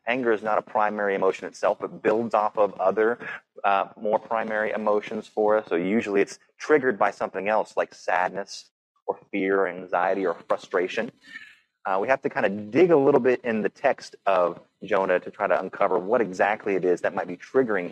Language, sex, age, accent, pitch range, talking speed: English, male, 30-49, American, 95-130 Hz, 200 wpm